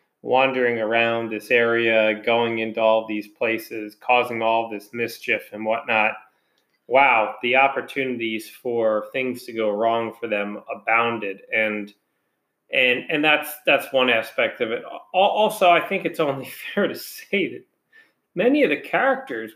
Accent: American